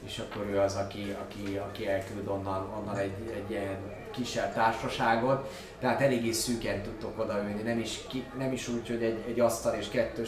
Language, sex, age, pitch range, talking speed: Hungarian, male, 20-39, 110-130 Hz, 185 wpm